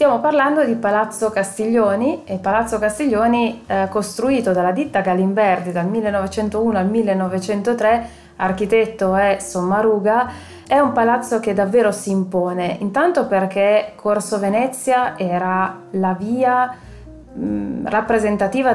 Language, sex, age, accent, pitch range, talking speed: Italian, female, 20-39, native, 190-230 Hz, 110 wpm